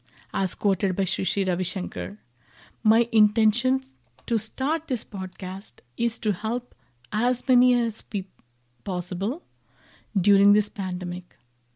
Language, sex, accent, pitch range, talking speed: English, female, Indian, 165-230 Hz, 115 wpm